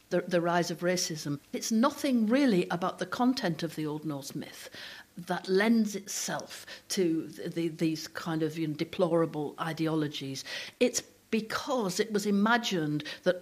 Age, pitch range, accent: 60-79, 165-210 Hz, British